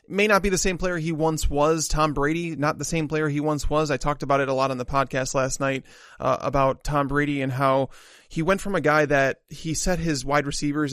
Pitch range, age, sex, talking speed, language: 135-155 Hz, 20-39, male, 255 wpm, English